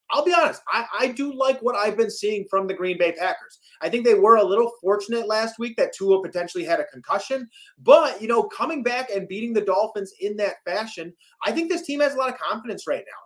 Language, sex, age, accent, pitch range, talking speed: English, male, 30-49, American, 170-245 Hz, 245 wpm